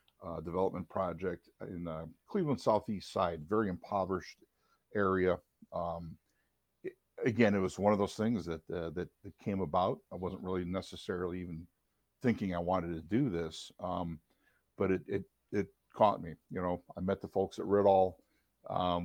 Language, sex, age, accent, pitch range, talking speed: English, male, 60-79, American, 85-105 Hz, 165 wpm